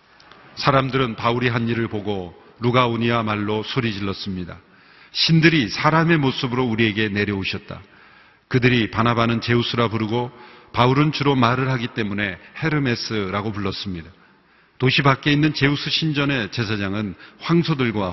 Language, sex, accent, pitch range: Korean, male, native, 110-140 Hz